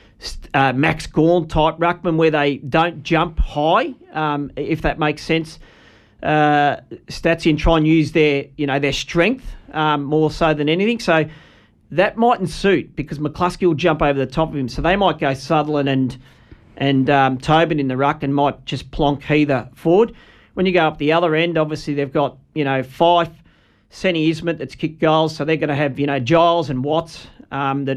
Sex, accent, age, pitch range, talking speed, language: male, Australian, 40-59, 140-160 Hz, 195 wpm, English